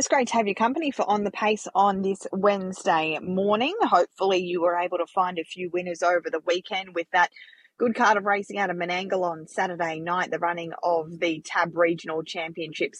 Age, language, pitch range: 20-39, English, 175-200 Hz